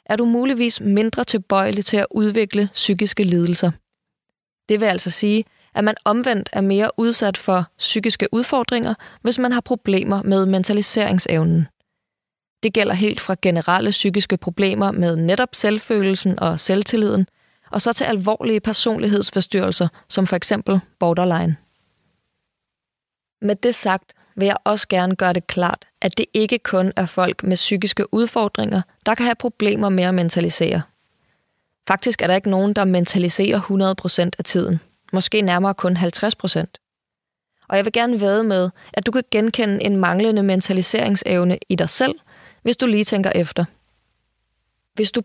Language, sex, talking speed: Danish, female, 150 wpm